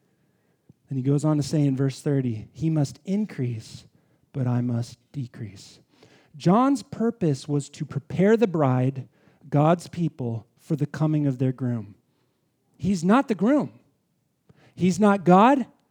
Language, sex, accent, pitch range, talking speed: English, male, American, 135-195 Hz, 145 wpm